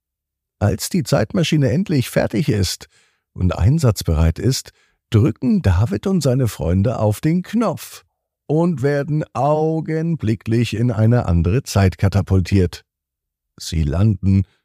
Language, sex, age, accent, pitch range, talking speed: German, male, 50-69, German, 85-135 Hz, 110 wpm